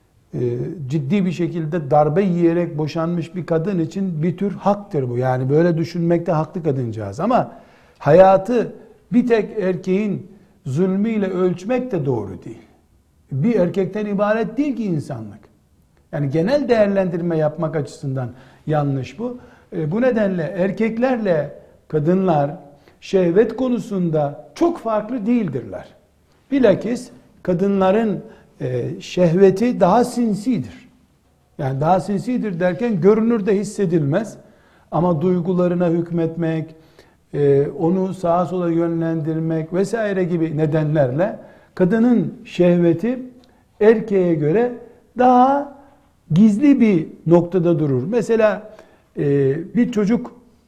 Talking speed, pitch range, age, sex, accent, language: 100 wpm, 155-215 Hz, 60-79, male, native, Turkish